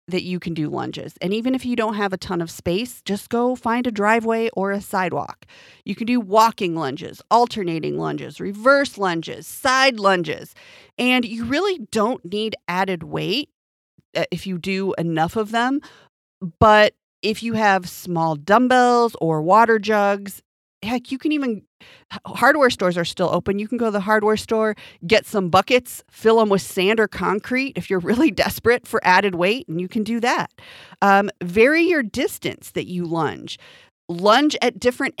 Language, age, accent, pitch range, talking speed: English, 40-59, American, 175-230 Hz, 175 wpm